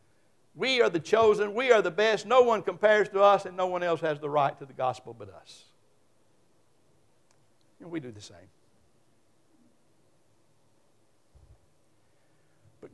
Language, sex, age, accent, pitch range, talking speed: English, male, 60-79, American, 140-195 Hz, 145 wpm